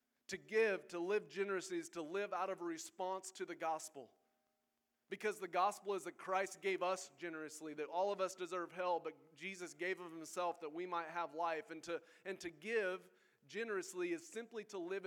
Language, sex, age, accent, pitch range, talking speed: English, male, 30-49, American, 165-200 Hz, 195 wpm